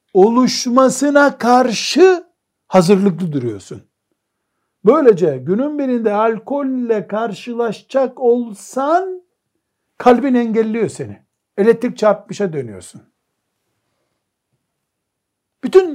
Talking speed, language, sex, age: 65 wpm, Turkish, male, 60-79